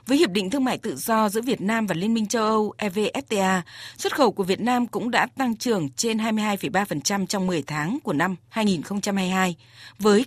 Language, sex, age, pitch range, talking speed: Vietnamese, female, 20-39, 185-235 Hz, 200 wpm